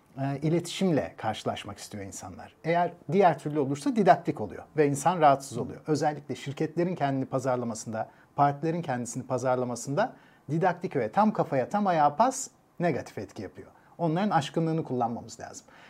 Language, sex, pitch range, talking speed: Turkish, male, 135-185 Hz, 130 wpm